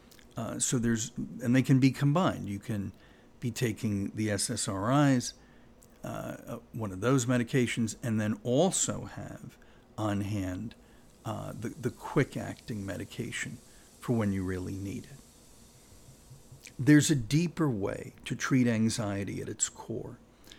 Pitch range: 110-130 Hz